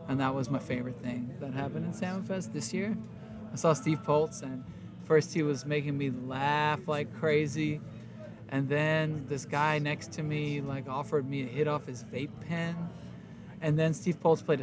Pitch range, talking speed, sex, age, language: 135-165 Hz, 195 wpm, male, 20-39, English